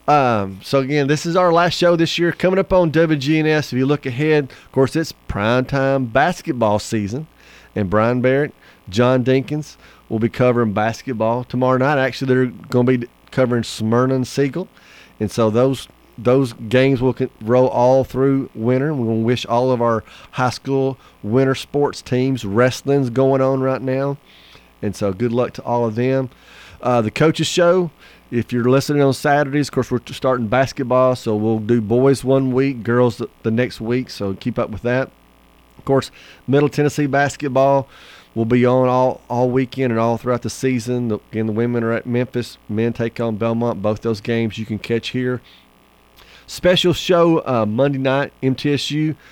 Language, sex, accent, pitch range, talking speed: English, male, American, 115-135 Hz, 180 wpm